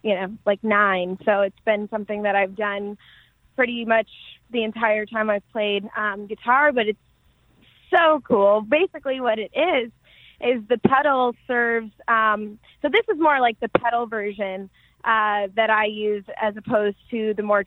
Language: English